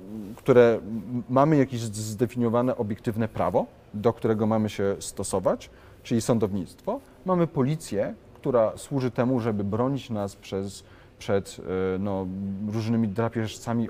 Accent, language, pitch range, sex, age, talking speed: native, Polish, 100-125 Hz, male, 30-49, 110 wpm